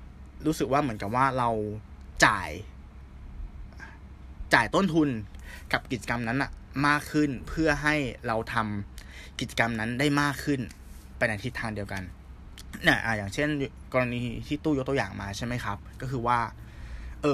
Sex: male